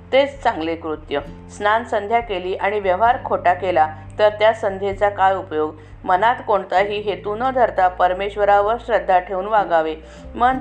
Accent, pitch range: native, 180-230 Hz